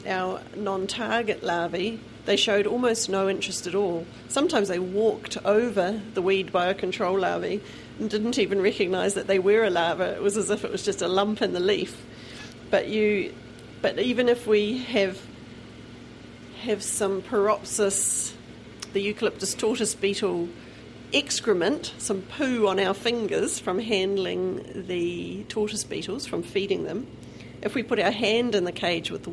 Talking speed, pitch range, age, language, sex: 160 wpm, 180-210 Hz, 40-59, English, female